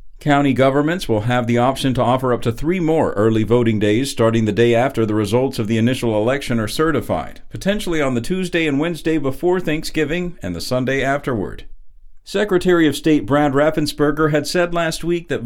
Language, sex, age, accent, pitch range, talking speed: English, male, 50-69, American, 115-165 Hz, 190 wpm